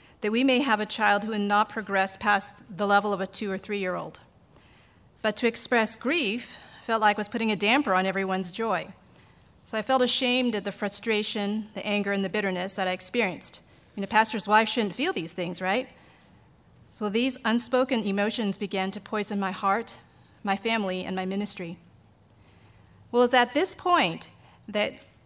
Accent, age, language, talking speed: American, 40-59, English, 185 wpm